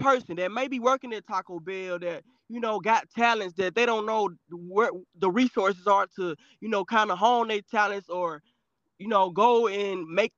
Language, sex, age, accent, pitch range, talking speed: English, male, 20-39, American, 200-275 Hz, 200 wpm